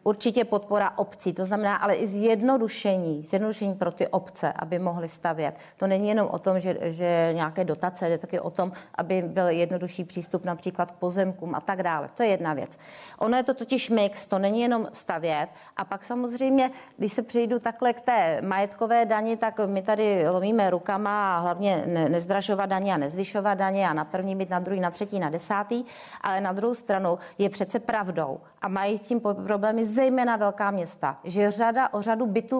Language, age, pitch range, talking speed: Czech, 30-49, 185-230 Hz, 190 wpm